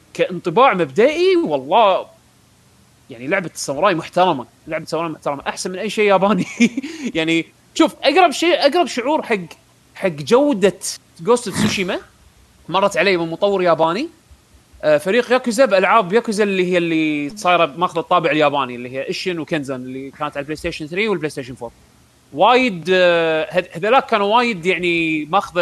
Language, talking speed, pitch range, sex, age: Arabic, 145 wpm, 155-210 Hz, male, 30-49